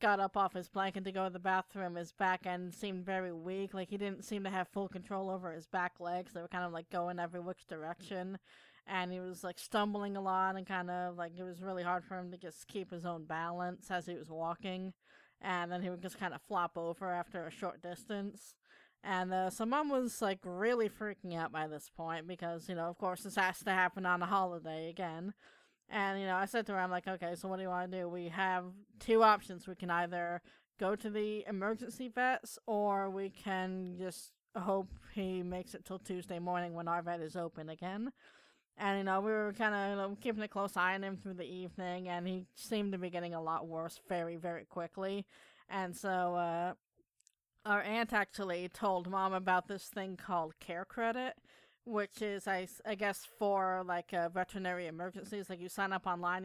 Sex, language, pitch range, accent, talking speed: female, English, 175-195 Hz, American, 220 wpm